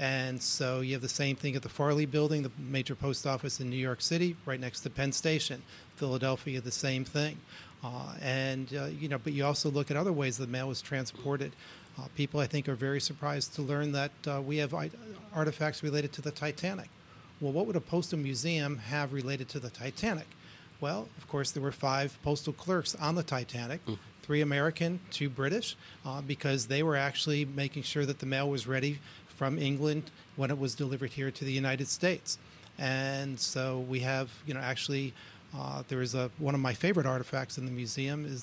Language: English